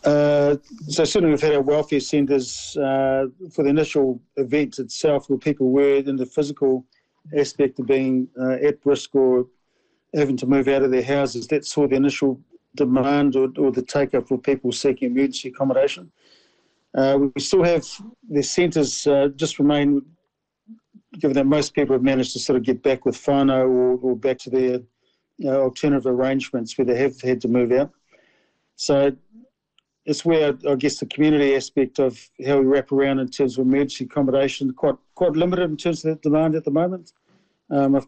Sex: male